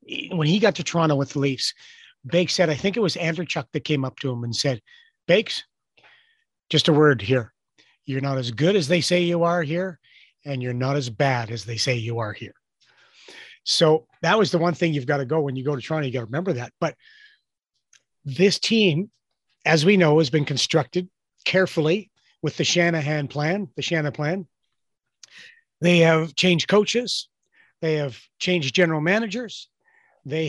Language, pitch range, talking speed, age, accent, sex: English, 140-185 Hz, 190 wpm, 30-49, American, male